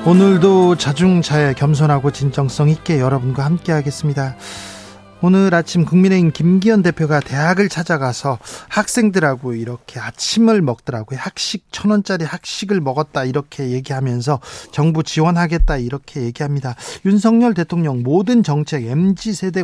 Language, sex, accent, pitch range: Korean, male, native, 140-190 Hz